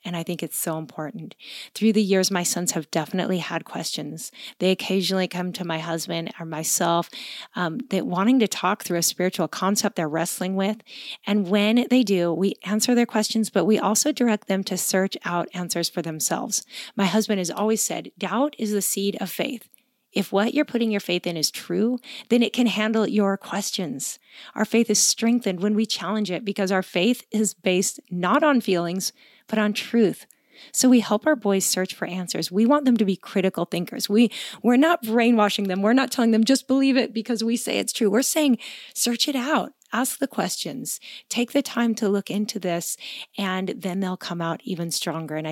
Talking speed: 205 wpm